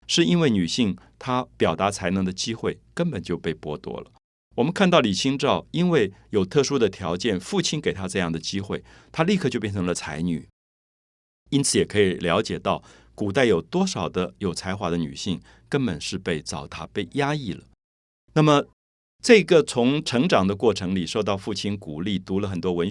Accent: native